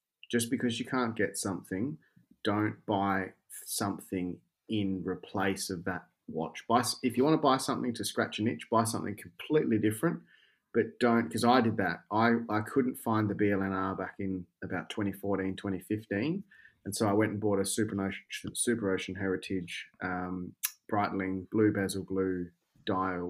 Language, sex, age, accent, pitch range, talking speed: English, male, 20-39, Australian, 95-115 Hz, 165 wpm